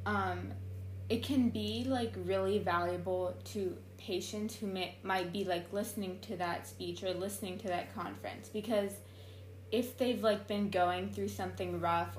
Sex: female